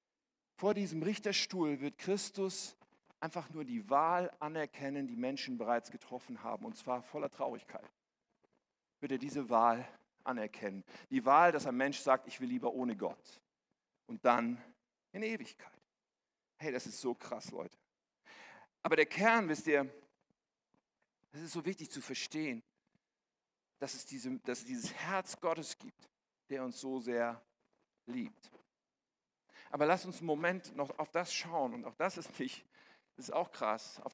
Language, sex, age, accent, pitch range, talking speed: German, male, 50-69, German, 135-215 Hz, 155 wpm